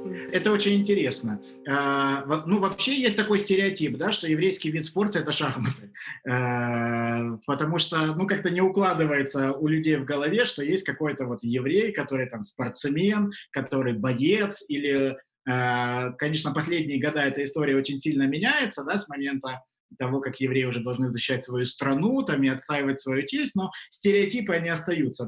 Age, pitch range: 20-39, 135-180 Hz